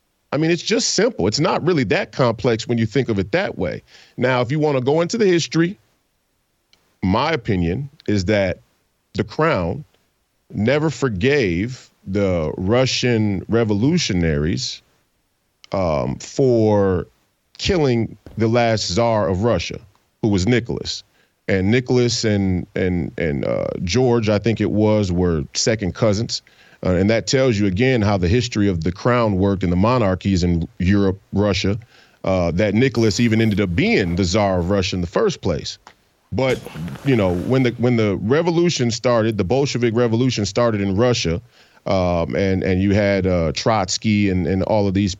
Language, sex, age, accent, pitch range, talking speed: English, male, 40-59, American, 95-125 Hz, 165 wpm